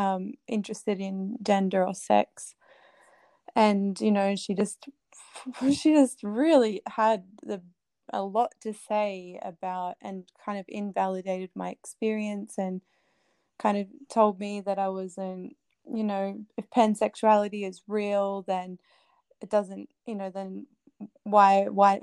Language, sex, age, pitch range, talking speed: English, female, 20-39, 190-215 Hz, 135 wpm